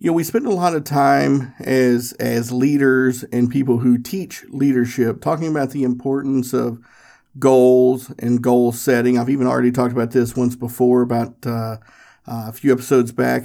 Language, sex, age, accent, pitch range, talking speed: English, male, 50-69, American, 120-145 Hz, 180 wpm